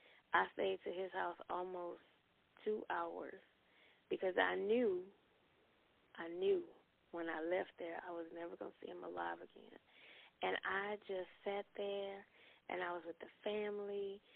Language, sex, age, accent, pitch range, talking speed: English, female, 20-39, American, 175-215 Hz, 155 wpm